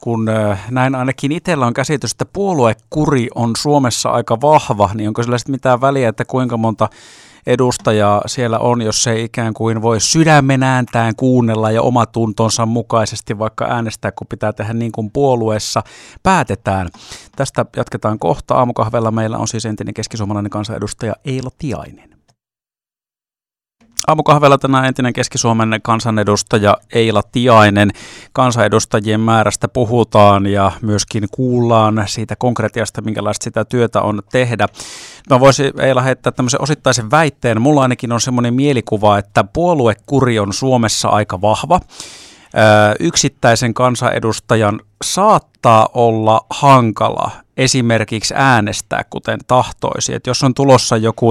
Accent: native